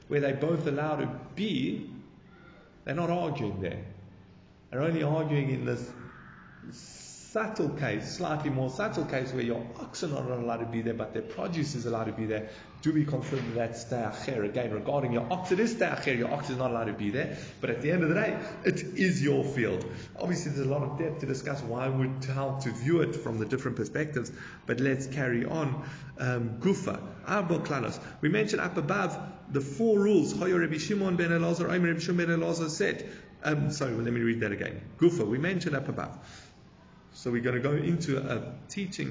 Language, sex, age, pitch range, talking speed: English, male, 30-49, 120-170 Hz, 205 wpm